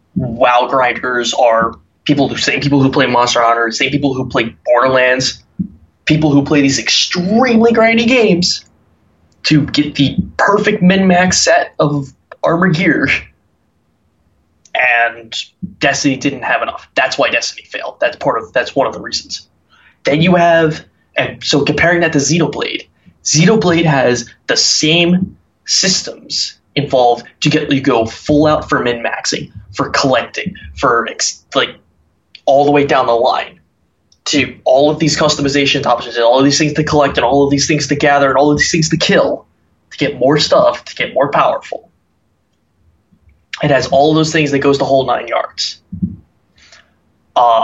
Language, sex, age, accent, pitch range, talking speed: English, male, 20-39, American, 120-155 Hz, 165 wpm